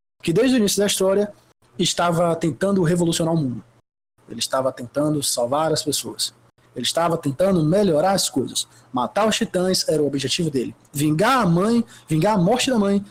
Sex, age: male, 20-39